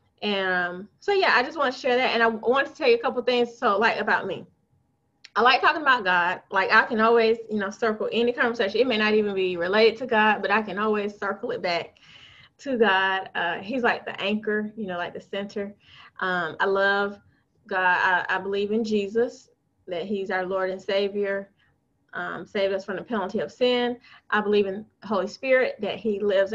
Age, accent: 20-39, American